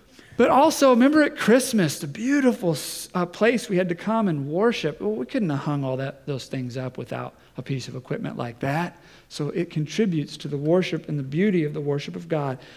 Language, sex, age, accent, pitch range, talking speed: English, male, 40-59, American, 135-175 Hz, 215 wpm